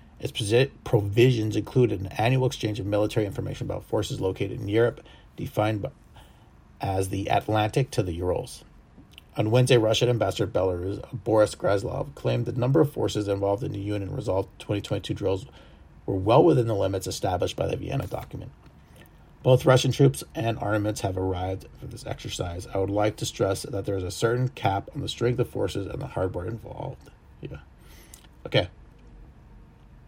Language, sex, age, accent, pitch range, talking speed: English, male, 30-49, American, 90-125 Hz, 165 wpm